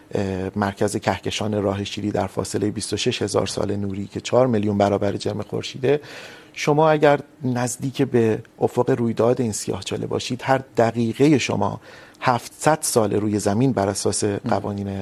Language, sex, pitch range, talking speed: Urdu, male, 110-135 Hz, 145 wpm